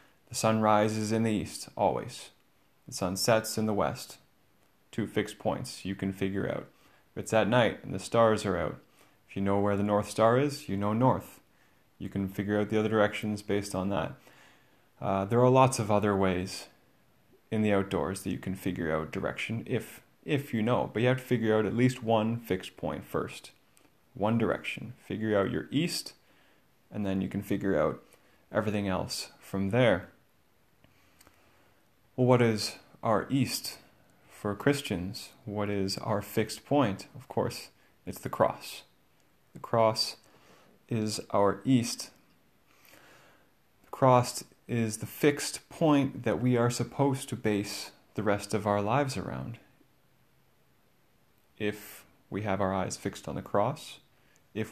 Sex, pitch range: male, 100-120 Hz